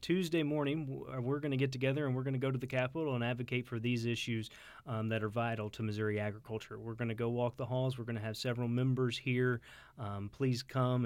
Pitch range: 110-130 Hz